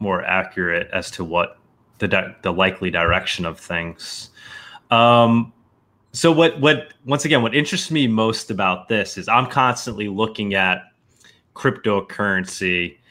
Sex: male